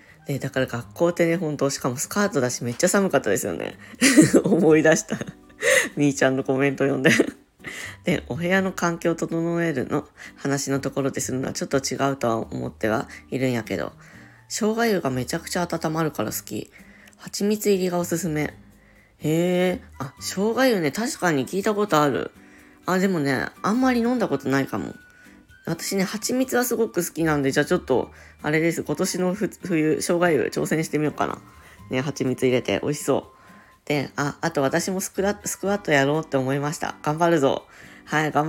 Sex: female